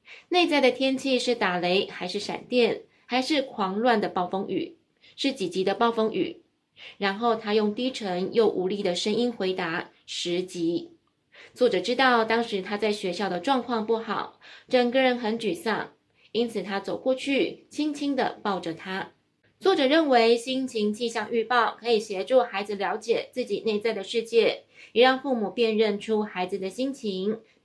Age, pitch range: 20-39, 195-250 Hz